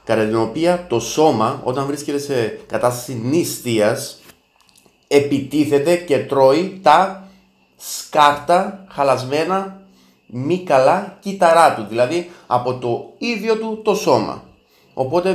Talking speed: 110 wpm